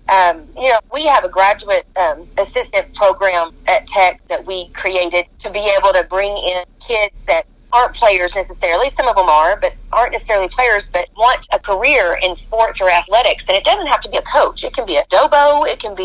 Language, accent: English, American